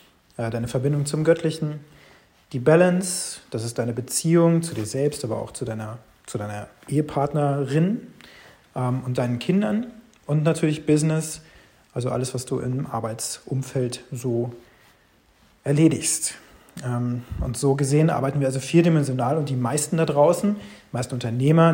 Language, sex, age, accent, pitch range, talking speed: German, male, 40-59, German, 125-160 Hz, 135 wpm